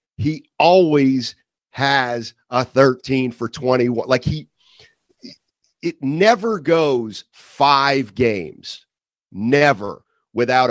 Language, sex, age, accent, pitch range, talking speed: English, male, 50-69, American, 125-165 Hz, 90 wpm